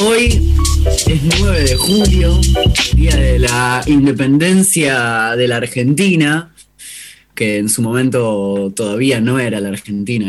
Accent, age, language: Argentinian, 20-39, Spanish